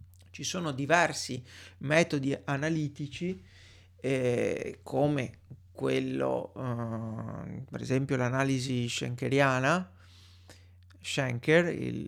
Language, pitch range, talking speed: Italian, 95-160 Hz, 75 wpm